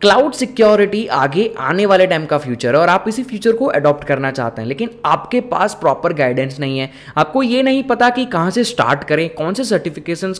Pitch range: 150-205 Hz